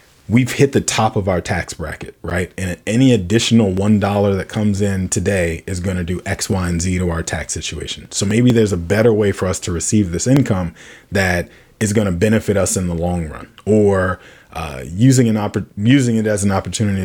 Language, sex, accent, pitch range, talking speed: English, male, American, 90-110 Hz, 210 wpm